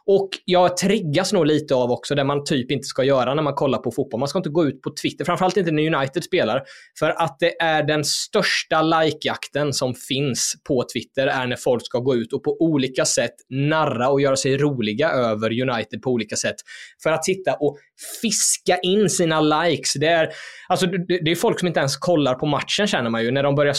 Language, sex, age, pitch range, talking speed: Swedish, male, 20-39, 135-180 Hz, 220 wpm